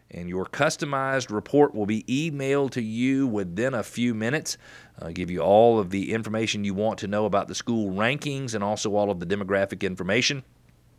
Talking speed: 190 wpm